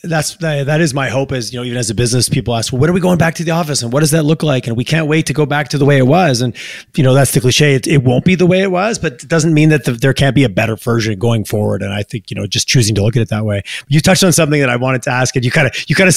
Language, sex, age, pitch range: English, male, 30-49, 130-160 Hz